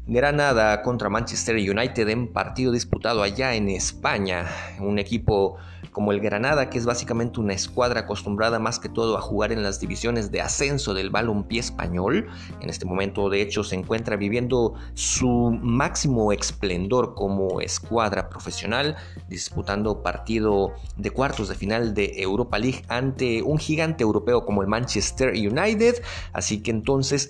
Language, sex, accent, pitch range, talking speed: Spanish, male, Mexican, 100-125 Hz, 150 wpm